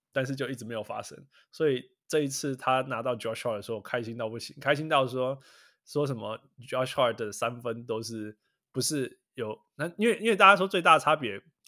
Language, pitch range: Chinese, 120-145 Hz